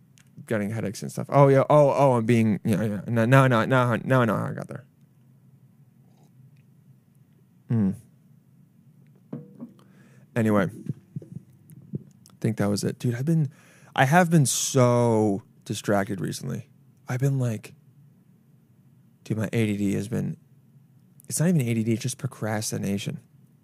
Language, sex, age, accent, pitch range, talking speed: English, male, 20-39, American, 125-155 Hz, 135 wpm